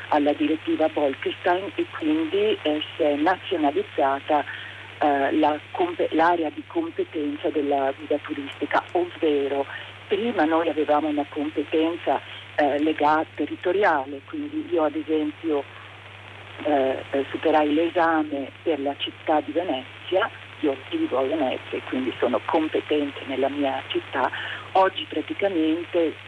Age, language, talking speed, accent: 50-69, Italian, 115 wpm, native